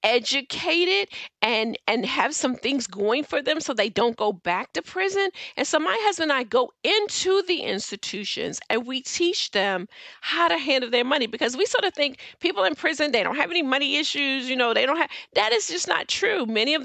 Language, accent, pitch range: English, American, 195-295 Hz